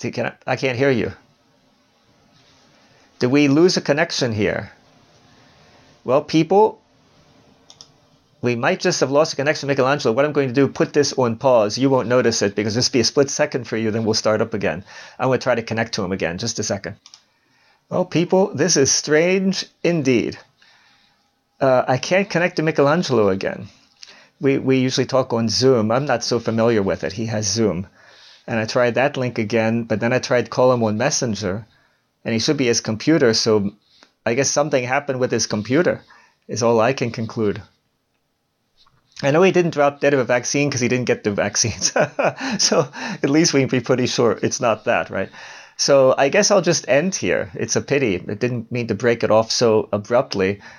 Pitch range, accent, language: 110-140 Hz, American, English